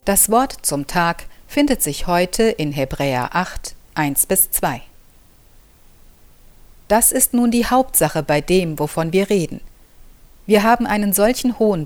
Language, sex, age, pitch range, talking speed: German, female, 50-69, 155-210 Hz, 140 wpm